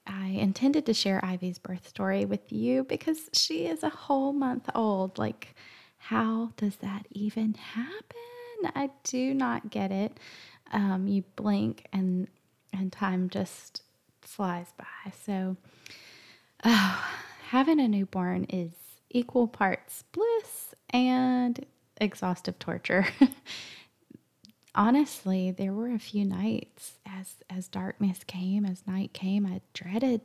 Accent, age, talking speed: American, 20-39, 125 wpm